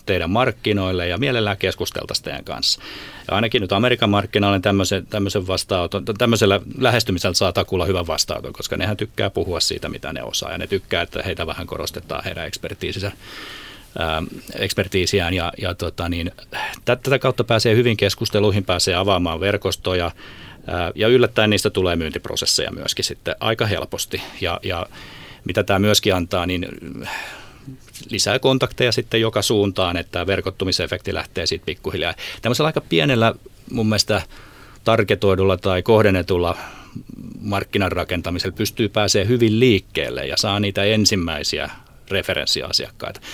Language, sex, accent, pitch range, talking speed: Finnish, male, native, 90-110 Hz, 120 wpm